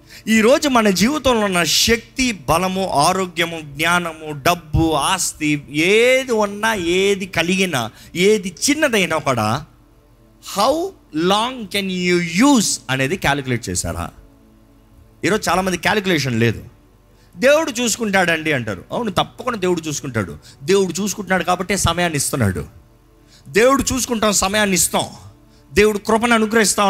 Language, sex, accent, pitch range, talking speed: Telugu, male, native, 140-205 Hz, 105 wpm